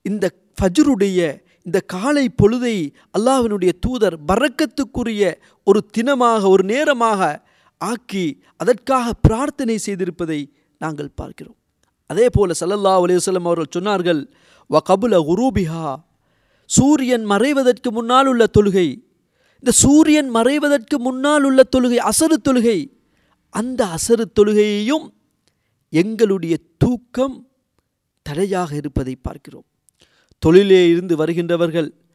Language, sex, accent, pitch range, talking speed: Tamil, male, native, 190-265 Hz, 90 wpm